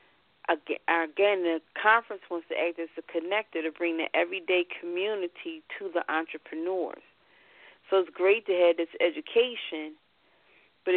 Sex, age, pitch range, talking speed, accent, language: female, 40-59, 170-210 Hz, 135 wpm, American, English